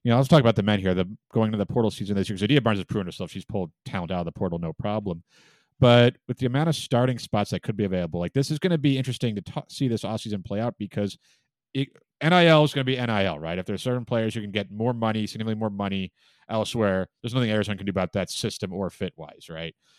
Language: English